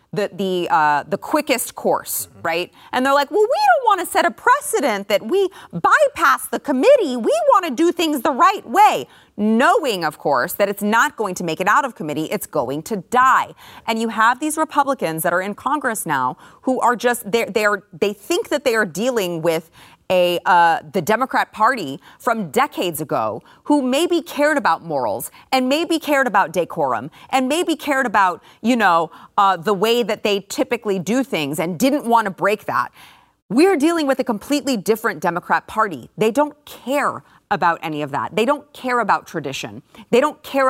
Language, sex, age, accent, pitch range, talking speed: English, female, 30-49, American, 195-285 Hz, 190 wpm